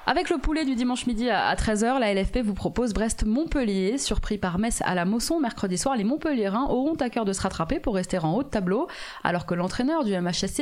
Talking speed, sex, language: 225 wpm, female, French